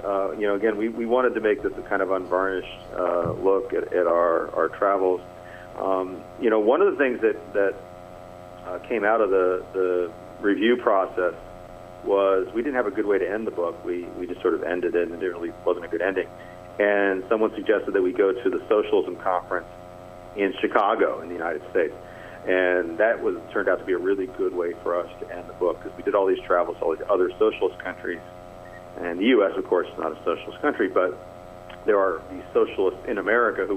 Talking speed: 225 wpm